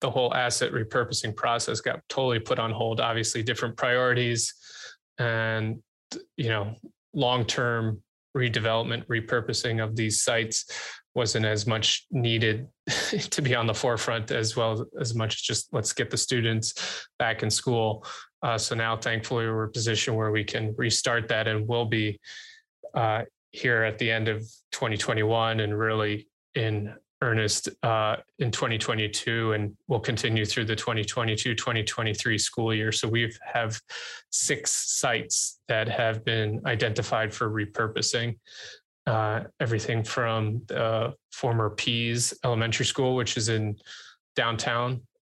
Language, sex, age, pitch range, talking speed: English, male, 20-39, 110-120 Hz, 140 wpm